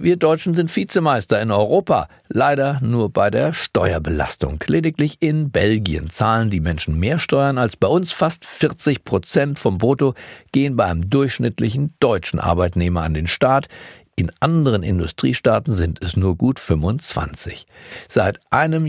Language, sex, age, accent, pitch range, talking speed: German, male, 50-69, German, 100-145 Hz, 145 wpm